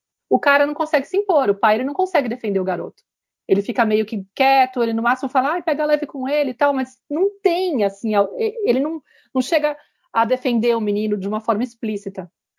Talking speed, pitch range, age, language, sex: 220 wpm, 210-300 Hz, 40-59, Portuguese, female